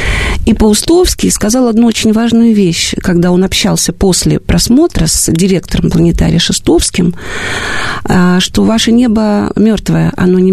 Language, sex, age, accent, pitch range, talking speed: Russian, female, 40-59, native, 175-220 Hz, 125 wpm